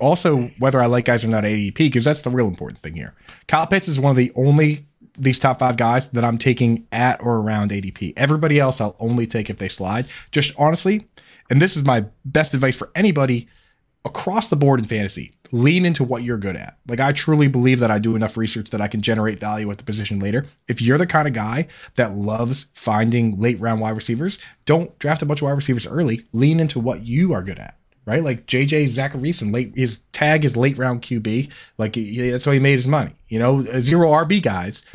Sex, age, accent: male, 20-39, American